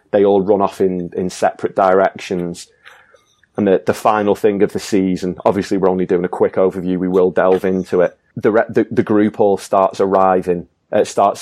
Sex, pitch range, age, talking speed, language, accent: male, 90-100 Hz, 30-49, 200 wpm, English, British